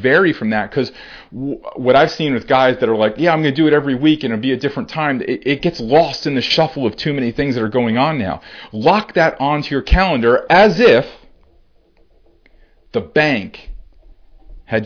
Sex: male